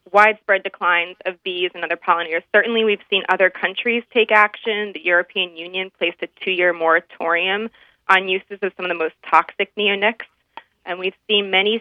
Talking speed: 175 wpm